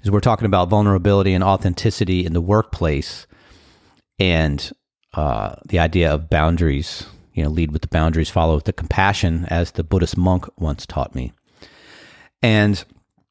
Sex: male